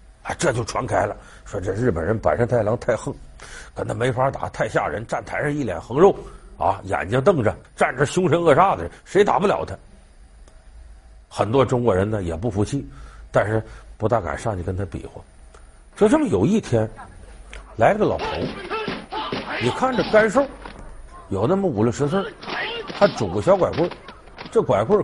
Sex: male